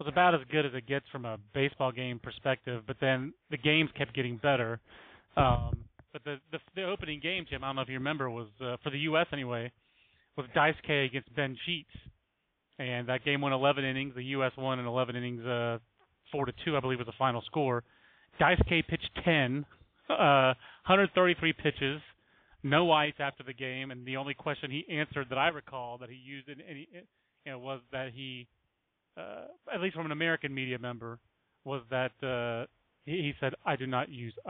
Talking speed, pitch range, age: 205 wpm, 125-150 Hz, 30-49